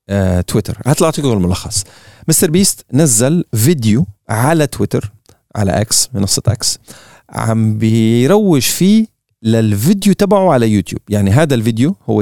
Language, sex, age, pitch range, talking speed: Arabic, male, 40-59, 110-170 Hz, 130 wpm